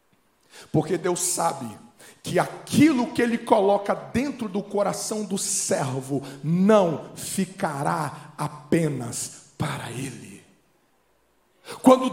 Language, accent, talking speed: Portuguese, Brazilian, 95 wpm